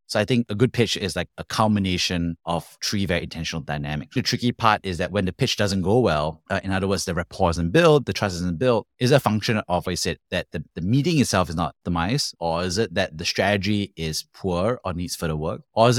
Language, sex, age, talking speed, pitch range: English, male, 30-49, 260 wpm, 85-115 Hz